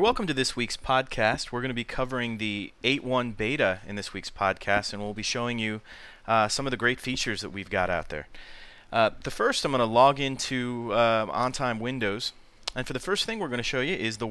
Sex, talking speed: male, 235 wpm